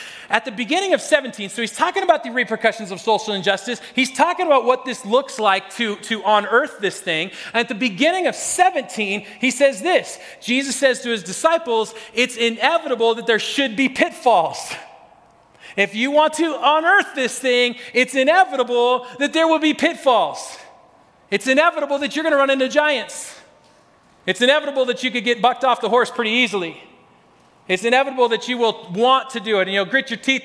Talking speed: 185 wpm